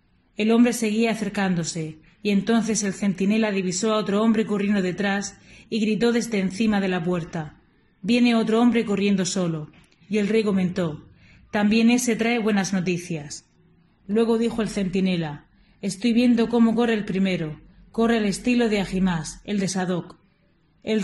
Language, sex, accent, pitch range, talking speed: Spanish, female, Spanish, 185-225 Hz, 155 wpm